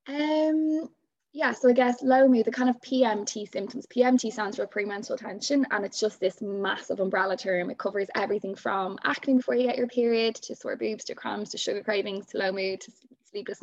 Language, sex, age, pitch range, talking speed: English, female, 20-39, 195-250 Hz, 205 wpm